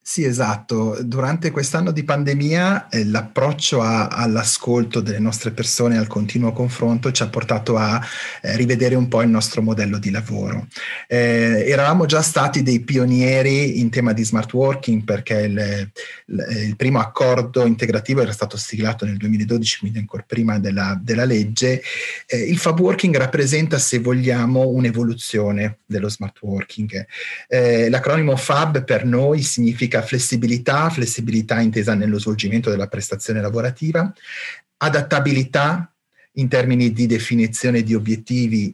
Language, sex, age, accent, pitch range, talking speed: Italian, male, 30-49, native, 110-130 Hz, 135 wpm